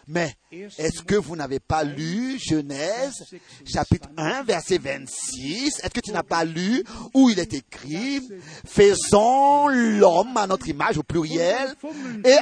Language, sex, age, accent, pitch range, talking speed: French, male, 40-59, French, 205-270 Hz, 155 wpm